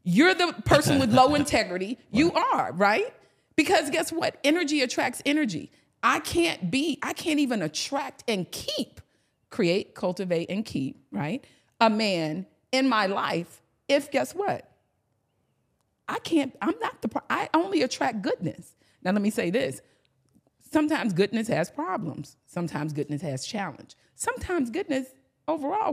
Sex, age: female, 40-59